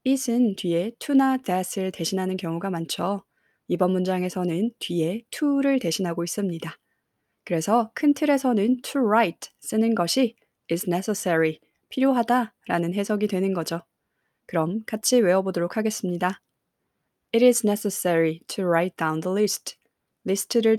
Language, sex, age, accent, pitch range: Korean, female, 20-39, native, 170-215 Hz